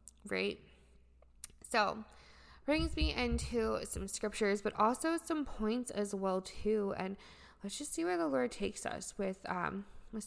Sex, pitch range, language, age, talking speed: female, 185-220 Hz, English, 20-39, 150 wpm